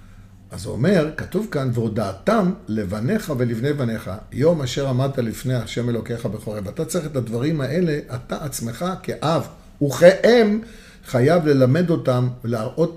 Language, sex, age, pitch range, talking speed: Hebrew, male, 50-69, 110-140 Hz, 135 wpm